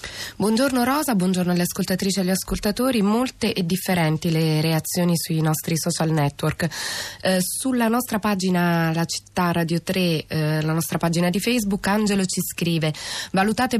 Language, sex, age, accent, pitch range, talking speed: Italian, female, 20-39, native, 165-200 Hz, 150 wpm